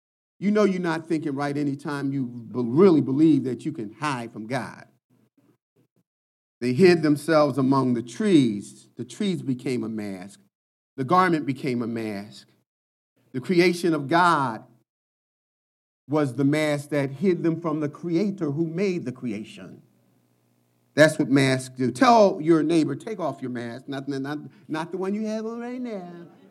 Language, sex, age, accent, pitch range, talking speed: English, male, 50-69, American, 125-185 Hz, 160 wpm